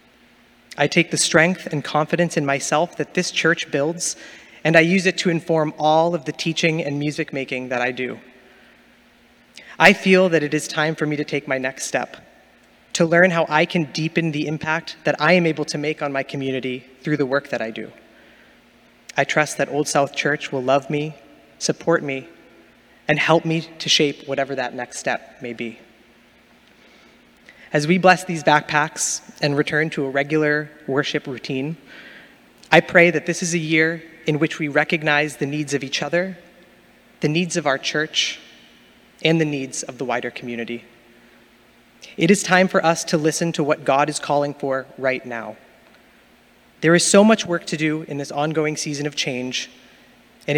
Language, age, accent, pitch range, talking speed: English, 20-39, American, 140-165 Hz, 185 wpm